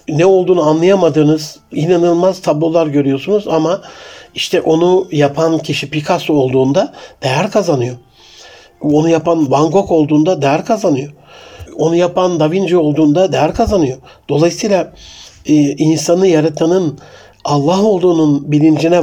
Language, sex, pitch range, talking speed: Turkish, male, 140-170 Hz, 110 wpm